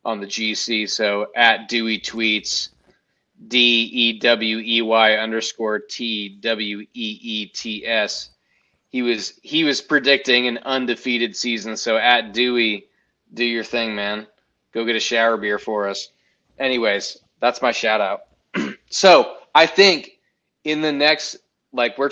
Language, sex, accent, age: English, male, American, 20-39